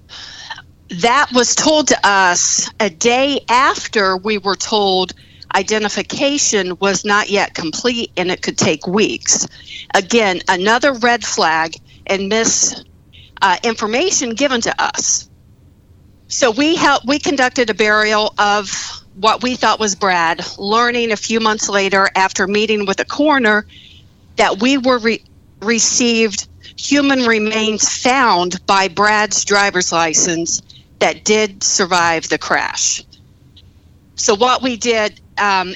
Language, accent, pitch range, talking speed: English, American, 180-230 Hz, 125 wpm